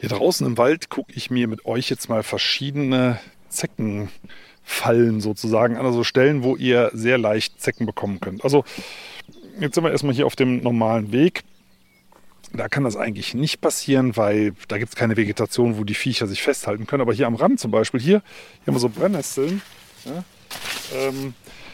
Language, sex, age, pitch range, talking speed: German, male, 40-59, 120-175 Hz, 180 wpm